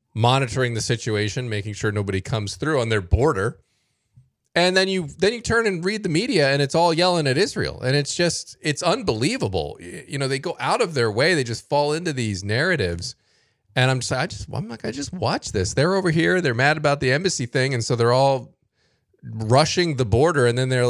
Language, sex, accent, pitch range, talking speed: English, male, American, 110-145 Hz, 220 wpm